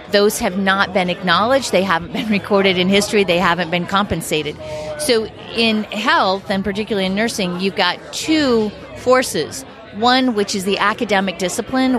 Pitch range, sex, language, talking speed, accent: 185-225 Hz, female, English, 160 wpm, American